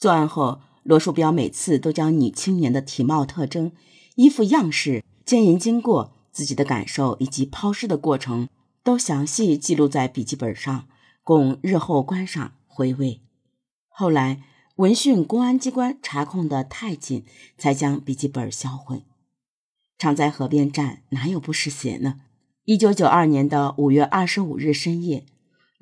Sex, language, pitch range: female, Chinese, 135-190 Hz